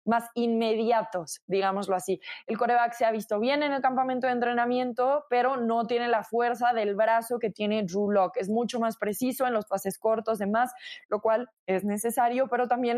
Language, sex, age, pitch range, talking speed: Spanish, female, 20-39, 205-240 Hz, 195 wpm